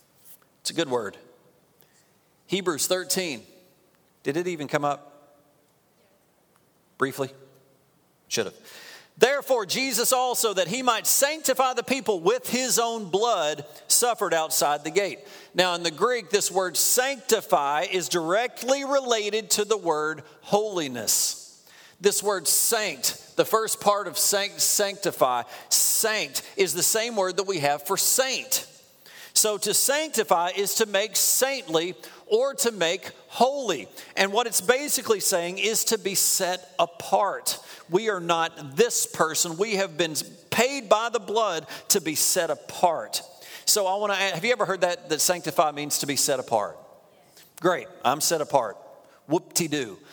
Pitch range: 170-225 Hz